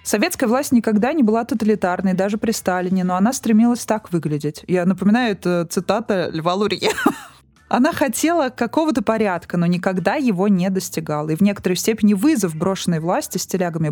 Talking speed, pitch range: 165 wpm, 180-225 Hz